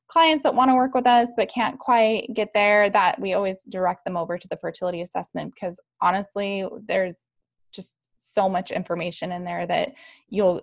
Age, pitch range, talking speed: 10-29, 195-250 Hz, 185 wpm